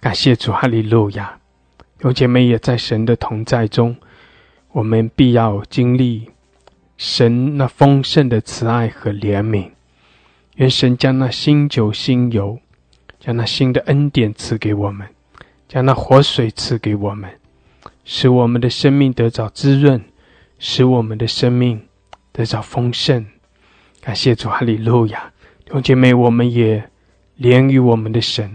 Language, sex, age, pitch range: English, male, 20-39, 110-130 Hz